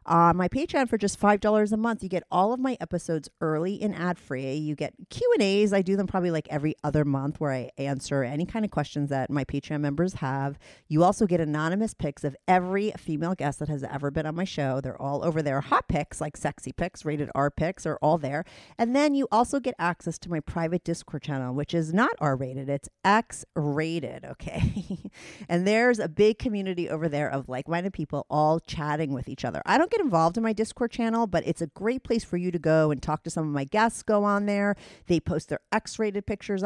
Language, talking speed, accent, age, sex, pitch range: English, 225 wpm, American, 40-59, female, 150-200 Hz